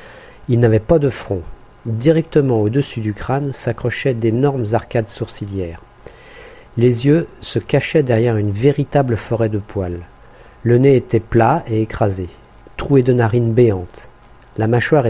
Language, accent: French, French